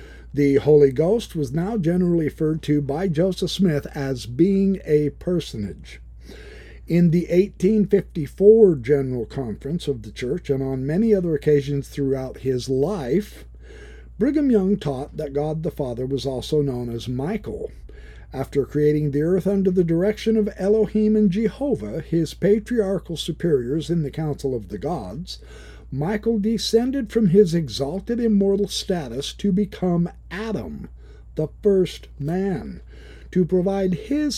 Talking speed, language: 140 wpm, English